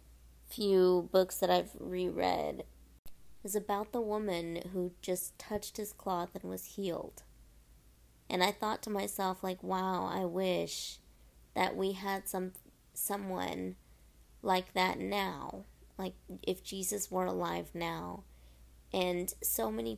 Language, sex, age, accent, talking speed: English, female, 20-39, American, 130 wpm